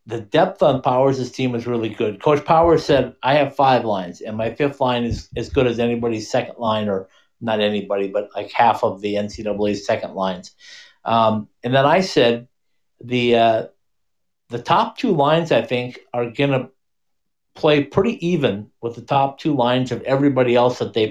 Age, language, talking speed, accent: 50-69, English, 190 wpm, American